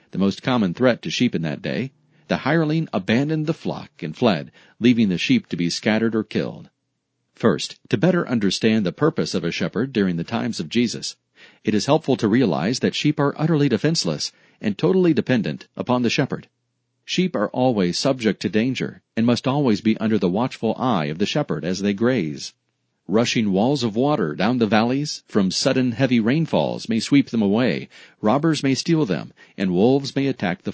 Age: 40-59